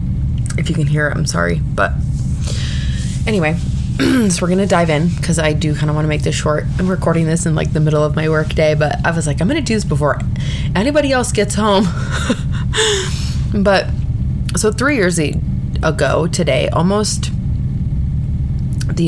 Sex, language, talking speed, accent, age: female, English, 180 wpm, American, 20-39